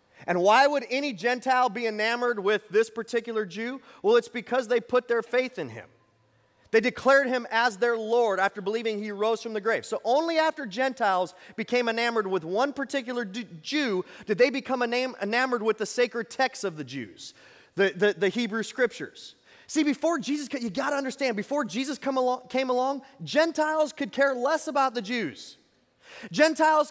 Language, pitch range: English, 210-275 Hz